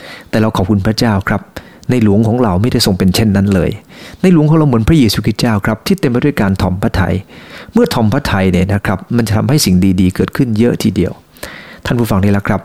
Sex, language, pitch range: male, English, 100-130 Hz